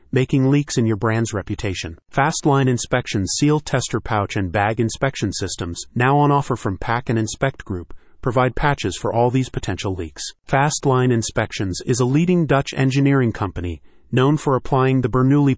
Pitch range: 110-135 Hz